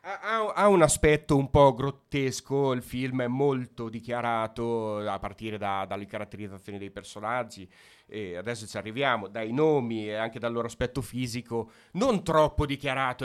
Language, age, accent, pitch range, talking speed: Italian, 30-49, native, 110-140 Hz, 145 wpm